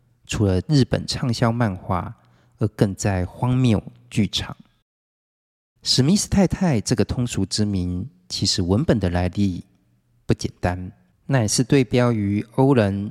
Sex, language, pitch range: male, Chinese, 100-125 Hz